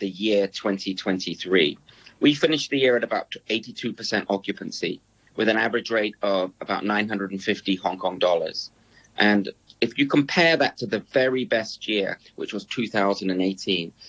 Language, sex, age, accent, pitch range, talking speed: English, male, 30-49, British, 100-115 Hz, 145 wpm